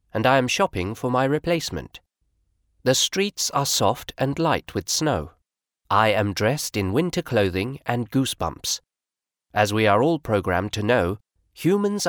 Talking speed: 155 wpm